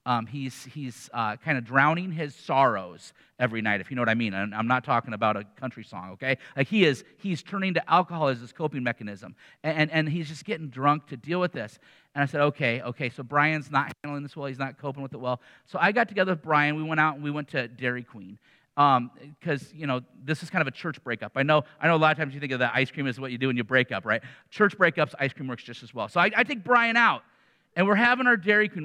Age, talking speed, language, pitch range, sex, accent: 40-59, 280 wpm, English, 130-165 Hz, male, American